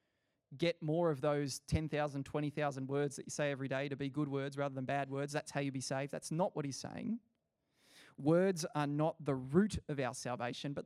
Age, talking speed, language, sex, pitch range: 20-39, 215 wpm, English, male, 140-170 Hz